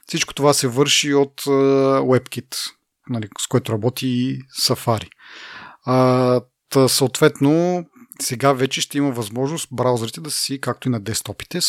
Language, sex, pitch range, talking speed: Bulgarian, male, 115-145 Hz, 125 wpm